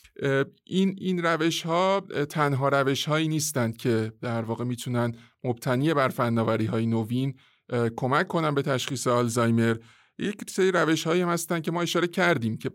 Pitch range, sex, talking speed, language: 125-150 Hz, male, 150 wpm, Persian